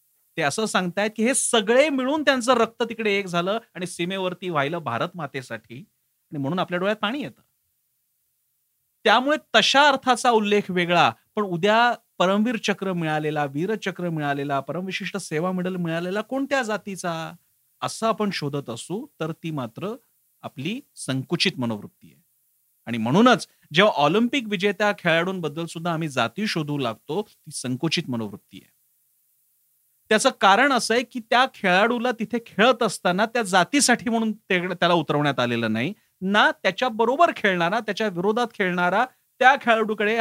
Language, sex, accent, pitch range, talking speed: Marathi, male, native, 165-225 Hz, 125 wpm